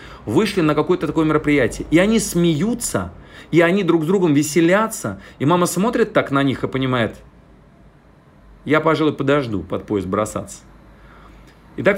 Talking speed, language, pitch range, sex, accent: 145 wpm, Russian, 135-185 Hz, male, native